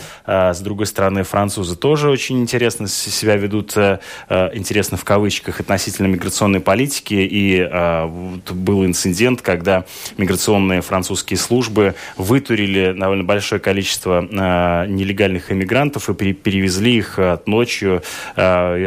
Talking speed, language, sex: 110 wpm, Russian, male